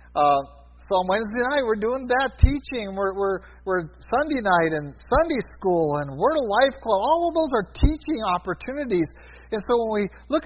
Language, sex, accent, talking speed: English, male, American, 190 wpm